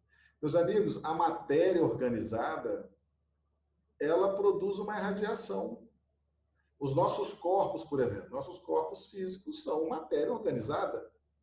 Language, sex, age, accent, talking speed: Portuguese, male, 50-69, Brazilian, 105 wpm